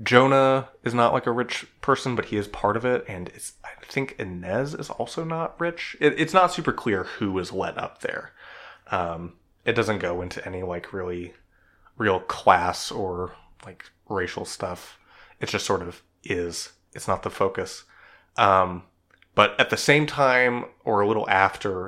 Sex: male